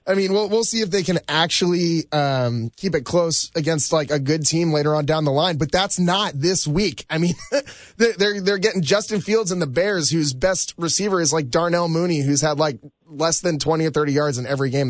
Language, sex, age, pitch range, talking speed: English, male, 10-29, 140-175 Hz, 230 wpm